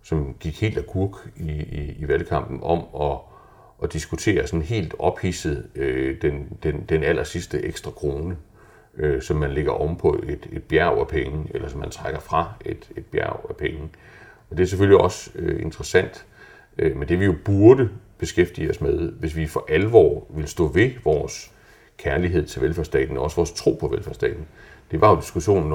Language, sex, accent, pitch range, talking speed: Danish, male, native, 75-95 Hz, 185 wpm